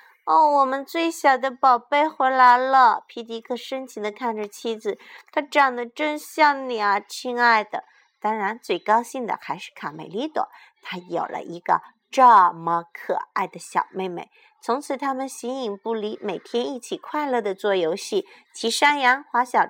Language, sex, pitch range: Chinese, female, 220-295 Hz